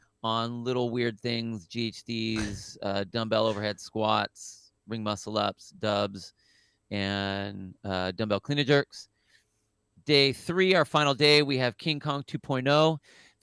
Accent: American